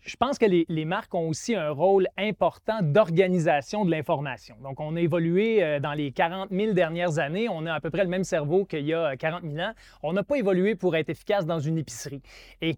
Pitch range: 150-200 Hz